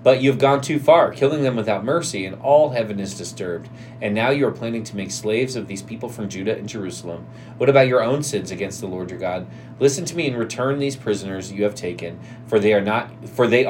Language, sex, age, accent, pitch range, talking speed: English, male, 30-49, American, 105-135 Hz, 245 wpm